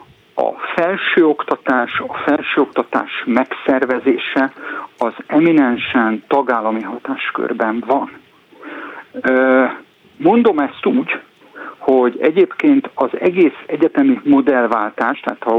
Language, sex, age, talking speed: Hungarian, male, 50-69, 80 wpm